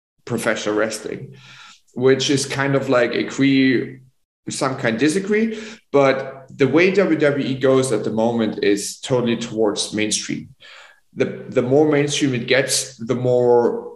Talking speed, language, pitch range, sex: 140 wpm, English, 110-130 Hz, male